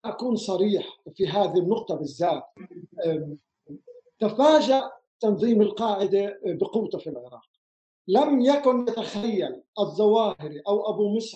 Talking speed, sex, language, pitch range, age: 100 wpm, male, Arabic, 210-270 Hz, 50-69